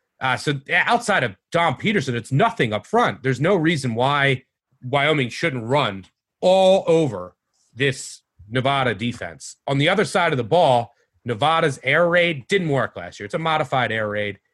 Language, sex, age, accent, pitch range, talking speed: English, male, 30-49, American, 115-155 Hz, 170 wpm